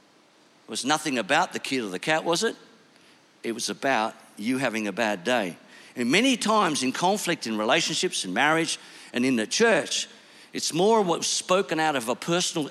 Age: 60-79